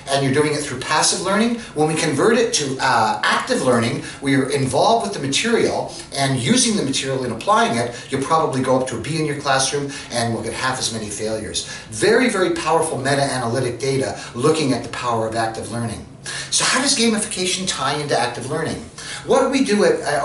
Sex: male